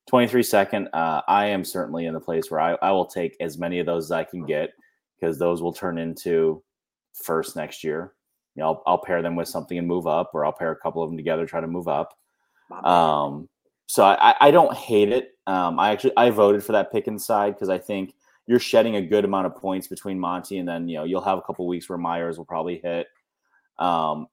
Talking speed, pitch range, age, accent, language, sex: 240 wpm, 85-95 Hz, 30-49, American, English, male